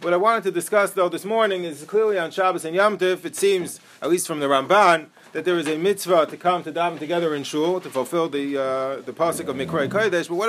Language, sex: English, male